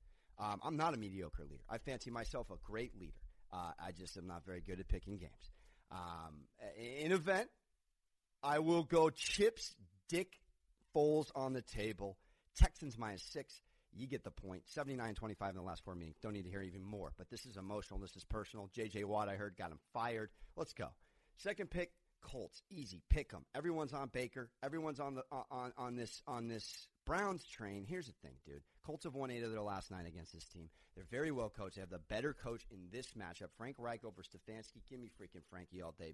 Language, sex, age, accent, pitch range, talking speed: English, male, 40-59, American, 95-130 Hz, 210 wpm